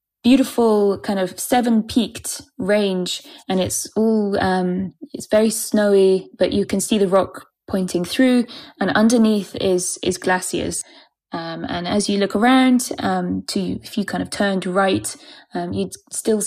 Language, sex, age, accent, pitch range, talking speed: German, female, 20-39, British, 190-230 Hz, 155 wpm